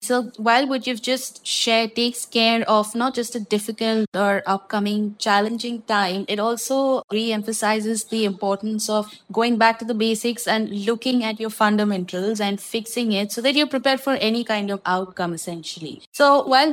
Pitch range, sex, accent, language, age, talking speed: 205-235 Hz, female, Indian, English, 20-39, 170 wpm